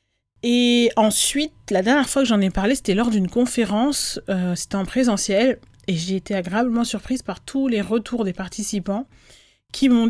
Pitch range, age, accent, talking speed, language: 185-235 Hz, 30-49, French, 180 wpm, French